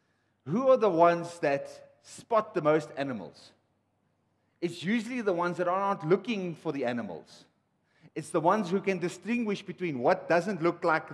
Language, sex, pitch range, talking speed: English, male, 150-215 Hz, 160 wpm